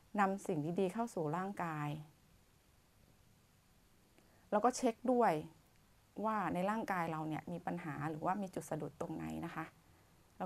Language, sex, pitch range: Thai, female, 155-200 Hz